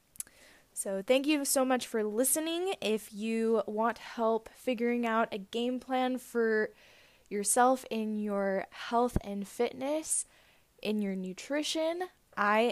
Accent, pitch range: American, 195-255 Hz